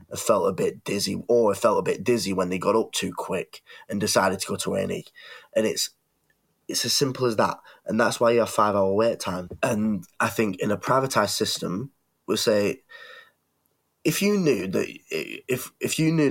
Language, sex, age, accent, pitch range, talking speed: English, male, 10-29, British, 95-120 Hz, 205 wpm